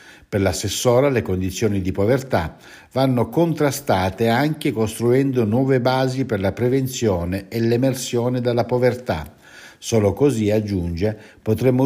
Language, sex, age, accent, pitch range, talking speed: Italian, male, 60-79, native, 95-130 Hz, 115 wpm